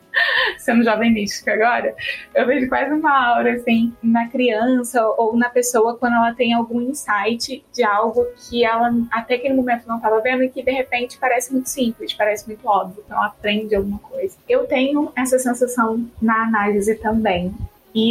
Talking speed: 170 wpm